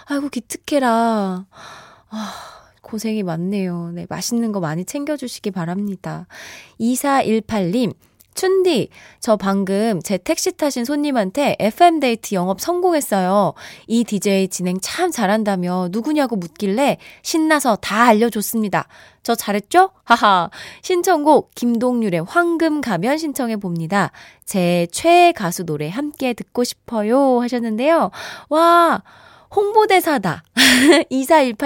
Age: 20-39